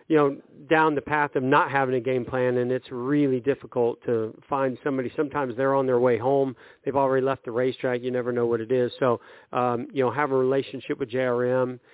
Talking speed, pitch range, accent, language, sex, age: 220 wpm, 125-140 Hz, American, English, male, 40-59